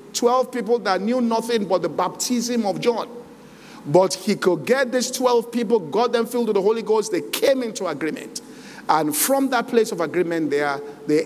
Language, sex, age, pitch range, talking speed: English, male, 50-69, 180-240 Hz, 190 wpm